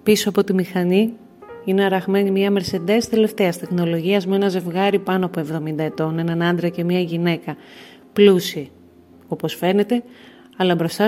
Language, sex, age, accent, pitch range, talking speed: Greek, female, 30-49, native, 160-190 Hz, 145 wpm